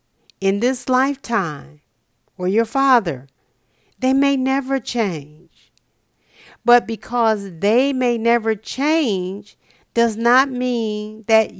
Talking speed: 105 wpm